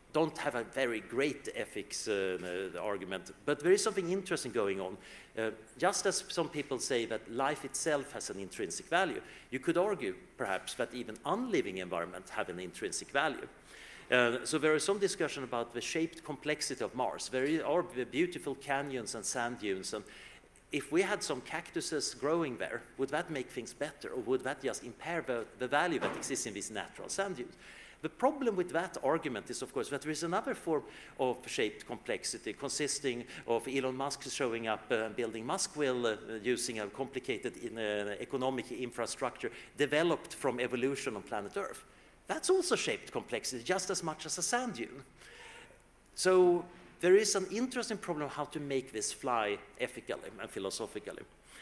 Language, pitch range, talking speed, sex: English, 125-190 Hz, 180 wpm, male